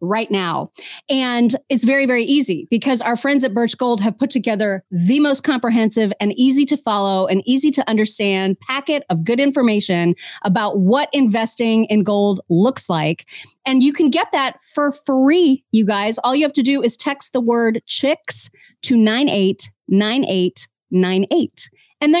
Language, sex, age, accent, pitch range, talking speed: English, female, 30-49, American, 210-275 Hz, 165 wpm